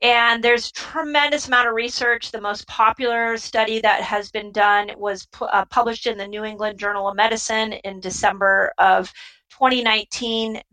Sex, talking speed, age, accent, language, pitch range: female, 155 wpm, 40-59, American, English, 205-245 Hz